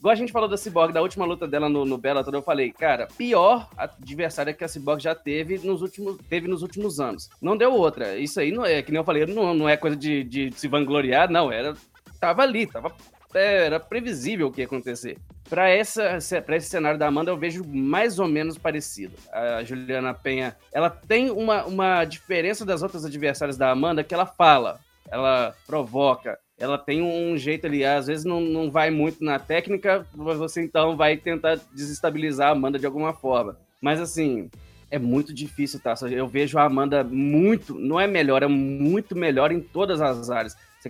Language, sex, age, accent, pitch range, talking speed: Portuguese, male, 20-39, Brazilian, 135-170 Hz, 200 wpm